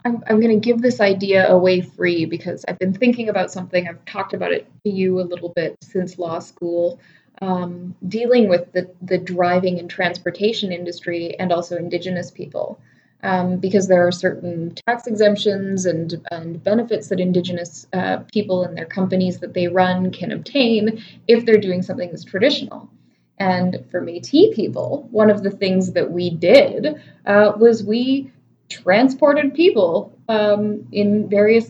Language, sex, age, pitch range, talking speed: English, female, 20-39, 175-215 Hz, 165 wpm